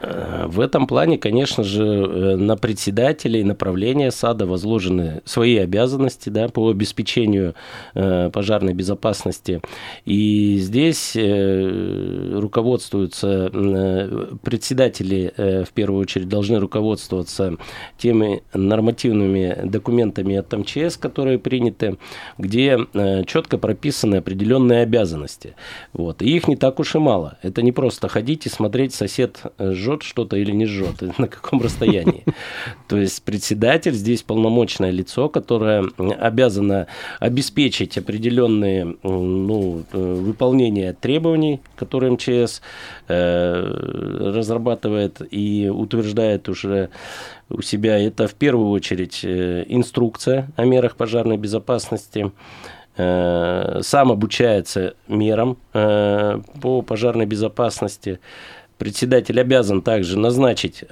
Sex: male